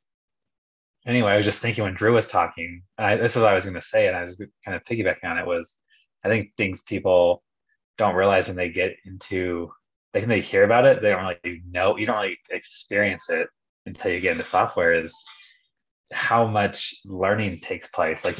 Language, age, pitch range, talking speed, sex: English, 20-39, 90-115 Hz, 210 wpm, male